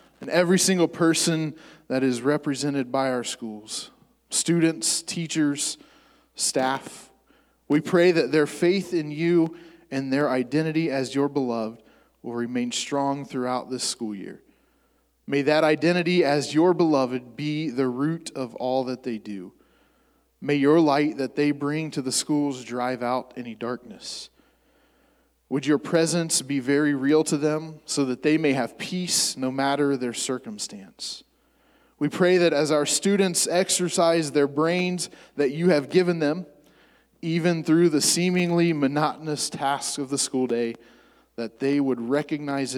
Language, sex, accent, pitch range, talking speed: English, male, American, 130-165 Hz, 150 wpm